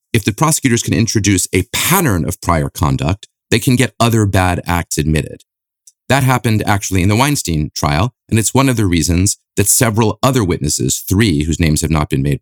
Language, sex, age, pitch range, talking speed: English, male, 30-49, 90-115 Hz, 200 wpm